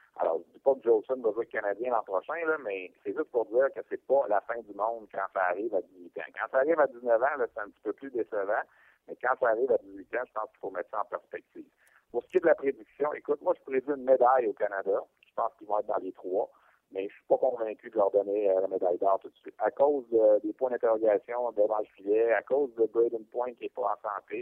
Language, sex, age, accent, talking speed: French, male, 50-69, French, 280 wpm